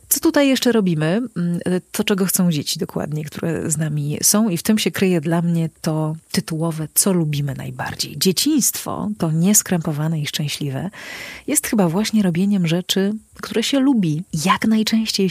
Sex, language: female, Polish